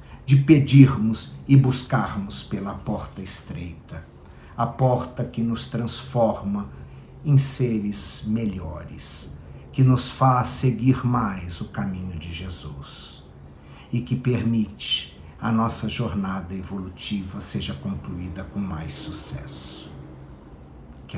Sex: male